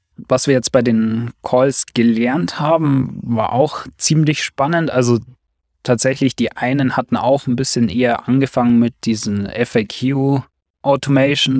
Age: 20-39